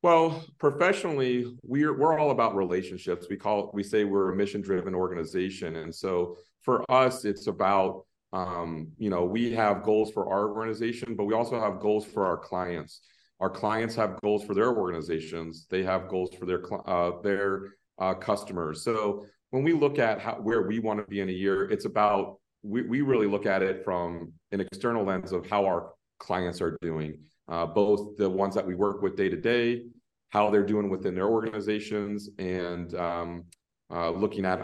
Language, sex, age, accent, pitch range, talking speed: English, male, 40-59, American, 90-105 Hz, 185 wpm